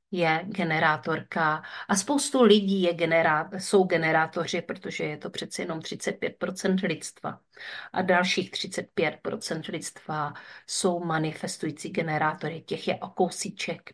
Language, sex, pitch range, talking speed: Czech, female, 155-190 Hz, 110 wpm